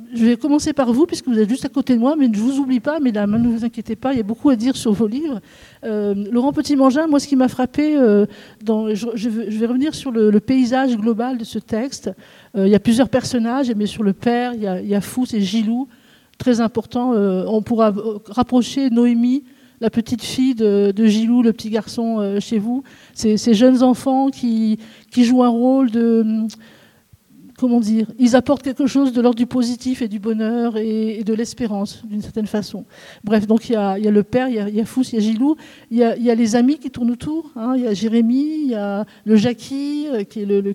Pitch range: 210-250 Hz